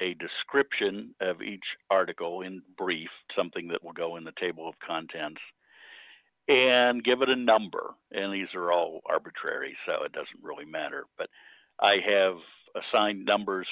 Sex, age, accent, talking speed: male, 50-69, American, 155 wpm